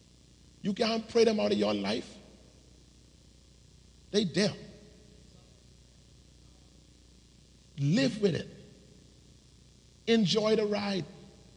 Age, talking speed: 50-69, 85 wpm